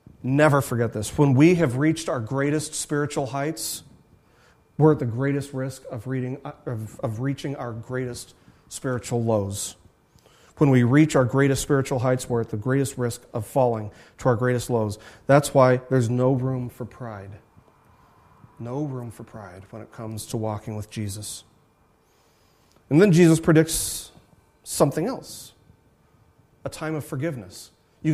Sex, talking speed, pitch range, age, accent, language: male, 150 wpm, 125-160 Hz, 40-59, American, English